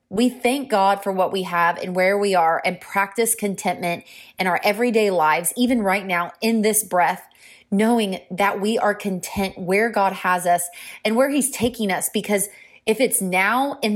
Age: 20-39